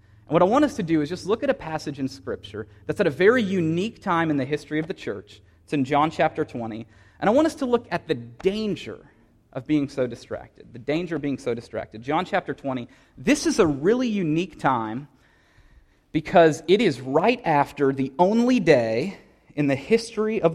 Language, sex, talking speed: English, male, 210 wpm